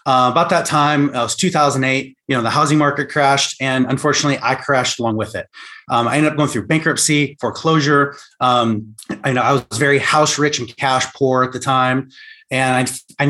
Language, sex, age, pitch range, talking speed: English, male, 30-49, 125-150 Hz, 210 wpm